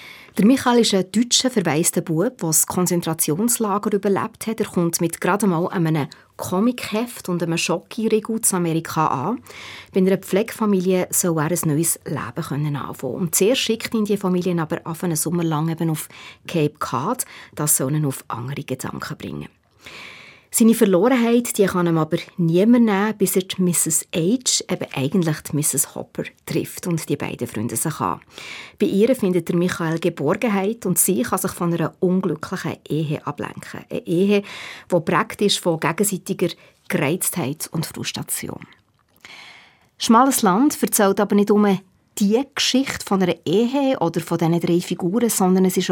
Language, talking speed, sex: German, 160 wpm, female